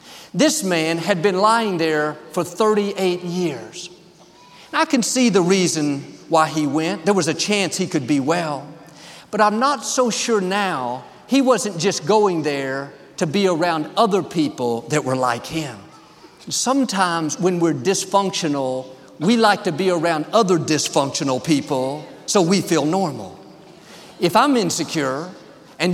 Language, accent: English, American